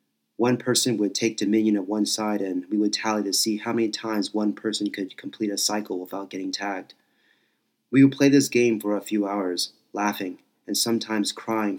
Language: English